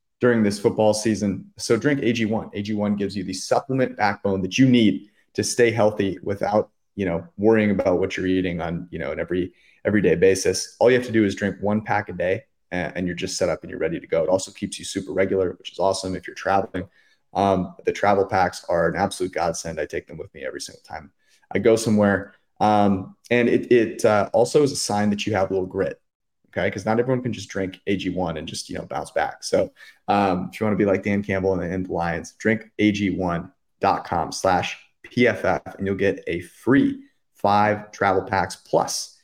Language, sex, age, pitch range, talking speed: English, male, 30-49, 95-115 Hz, 220 wpm